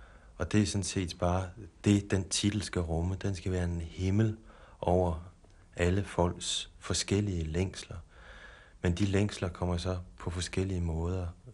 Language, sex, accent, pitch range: Danish, male, native, 85-95 Hz